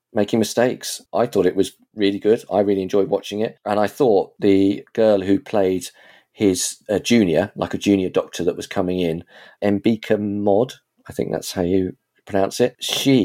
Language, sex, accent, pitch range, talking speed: English, male, British, 95-110 Hz, 185 wpm